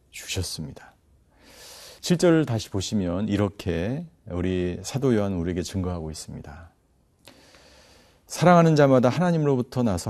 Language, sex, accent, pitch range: Korean, male, native, 95-135 Hz